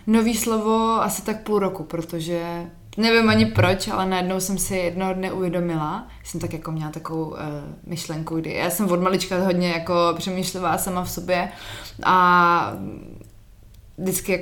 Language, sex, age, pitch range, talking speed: Slovak, female, 20-39, 170-210 Hz, 150 wpm